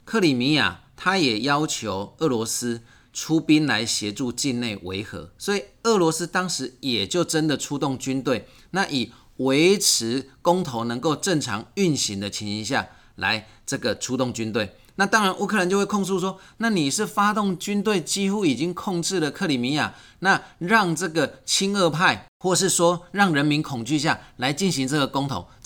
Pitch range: 115-175 Hz